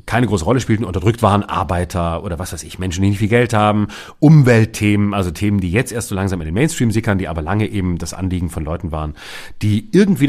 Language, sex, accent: German, male, German